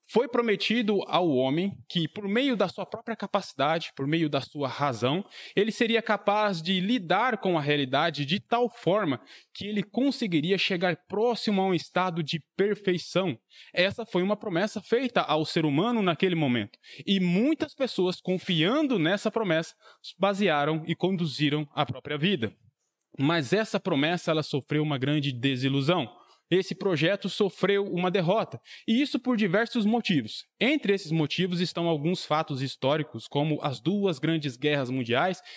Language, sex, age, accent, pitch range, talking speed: Portuguese, male, 20-39, Brazilian, 155-205 Hz, 150 wpm